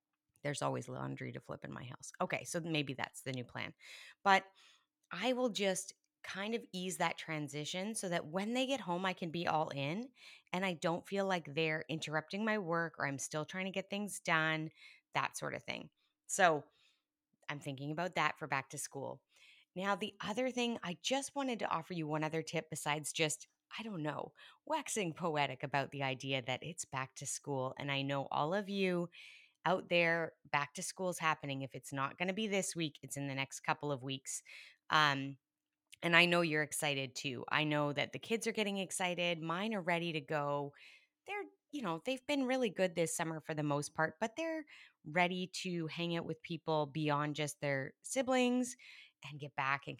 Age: 20-39